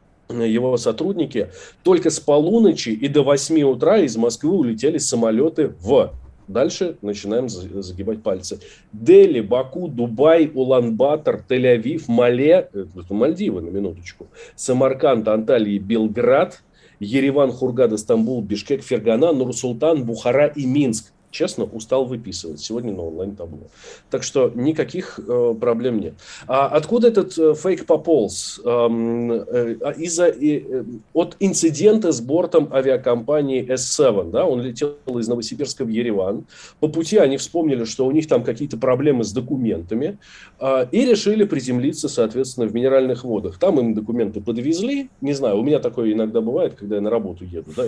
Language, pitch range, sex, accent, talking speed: Russian, 115-150 Hz, male, native, 145 wpm